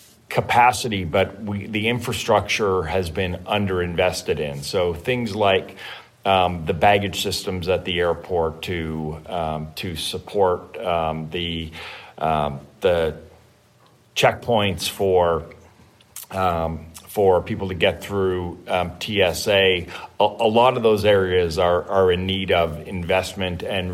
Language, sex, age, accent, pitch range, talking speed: English, male, 40-59, American, 90-100 Hz, 125 wpm